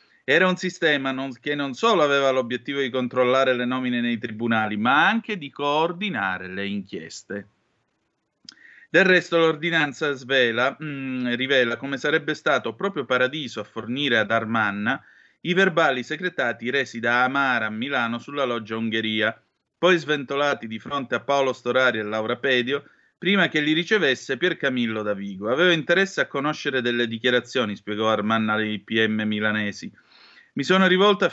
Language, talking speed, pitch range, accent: Italian, 155 wpm, 115-155 Hz, native